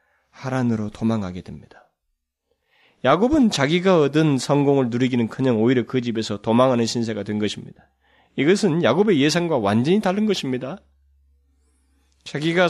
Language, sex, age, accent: Korean, male, 30-49, native